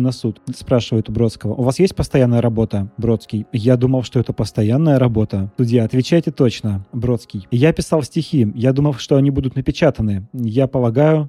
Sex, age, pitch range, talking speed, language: male, 20-39, 110-135 Hz, 170 wpm, Russian